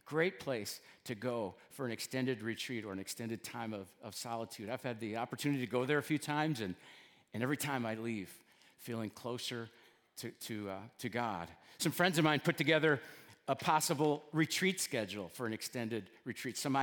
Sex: male